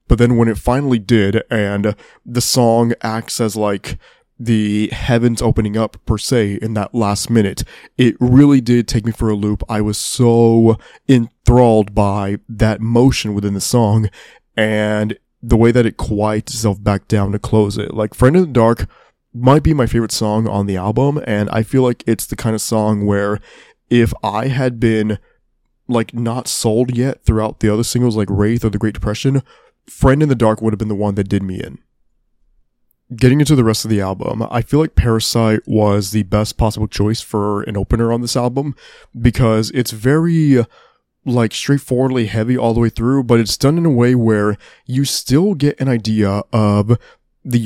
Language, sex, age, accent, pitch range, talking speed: English, male, 20-39, American, 105-125 Hz, 190 wpm